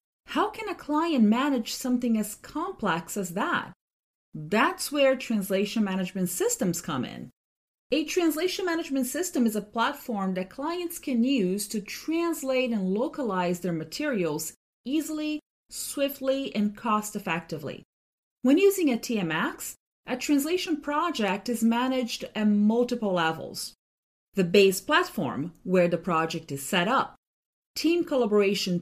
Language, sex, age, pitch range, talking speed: English, female, 30-49, 195-275 Hz, 130 wpm